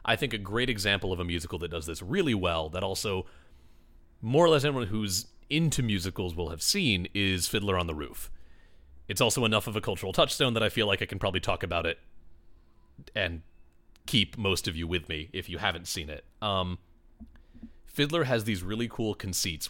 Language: English